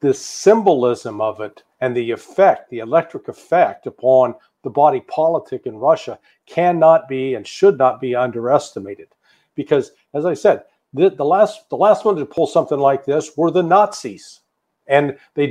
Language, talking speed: English, 165 wpm